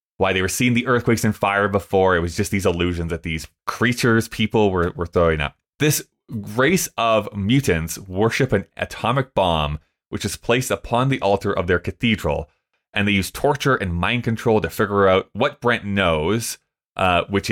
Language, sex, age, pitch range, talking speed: English, male, 20-39, 95-125 Hz, 185 wpm